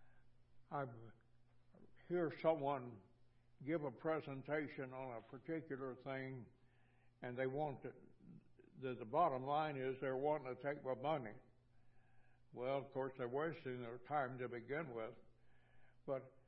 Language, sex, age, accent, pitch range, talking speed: English, male, 60-79, American, 125-150 Hz, 130 wpm